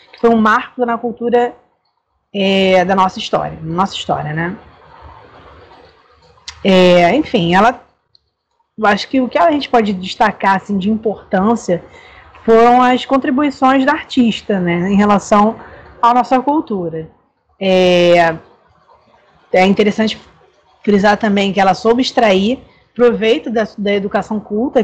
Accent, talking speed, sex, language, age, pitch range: Brazilian, 125 wpm, female, Portuguese, 20-39, 190-245 Hz